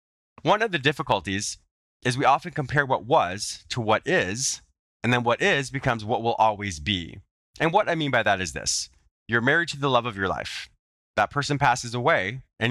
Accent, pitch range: American, 90-130 Hz